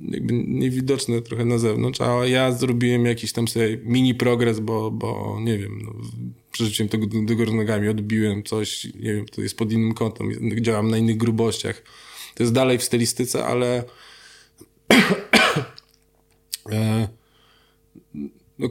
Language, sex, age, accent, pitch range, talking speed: Polish, male, 20-39, native, 110-125 Hz, 140 wpm